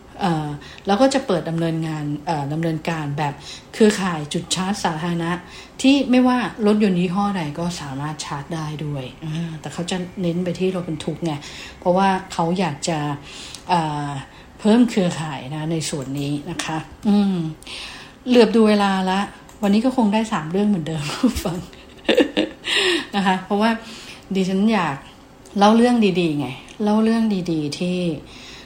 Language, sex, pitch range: English, female, 155-200 Hz